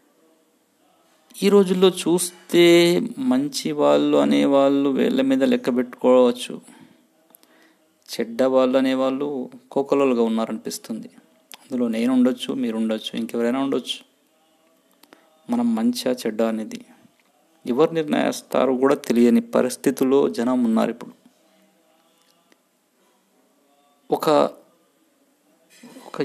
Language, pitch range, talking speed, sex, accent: Telugu, 125-205 Hz, 80 wpm, male, native